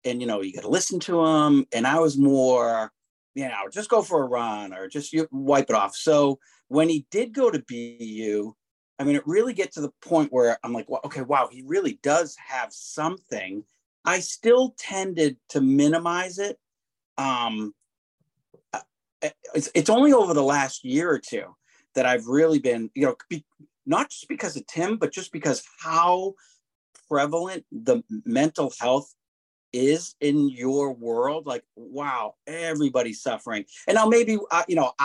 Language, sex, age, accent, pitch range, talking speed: English, male, 40-59, American, 130-180 Hz, 175 wpm